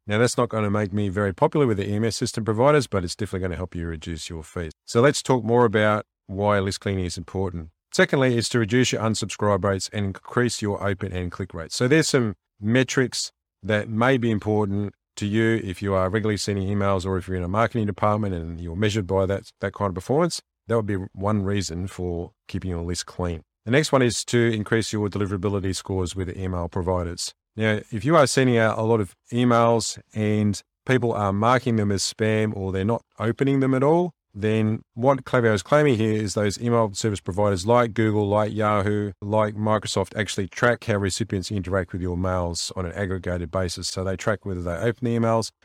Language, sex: English, male